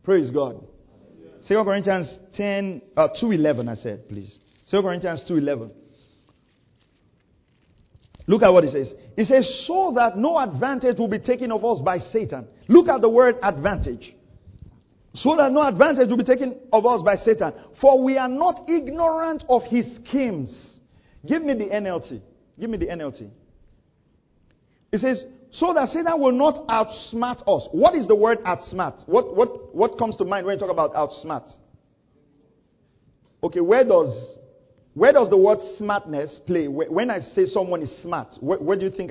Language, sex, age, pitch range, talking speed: English, male, 40-59, 155-250 Hz, 165 wpm